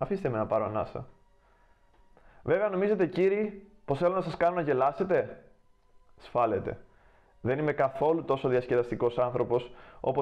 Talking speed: 130 wpm